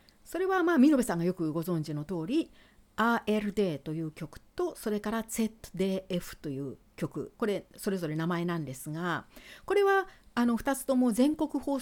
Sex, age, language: female, 60-79, Japanese